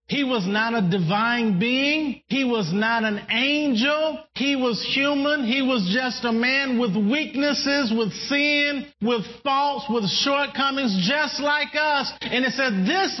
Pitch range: 195-255 Hz